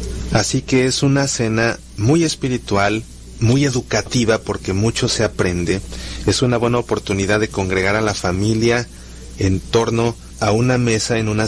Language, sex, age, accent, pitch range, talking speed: Spanish, male, 30-49, Mexican, 95-125 Hz, 150 wpm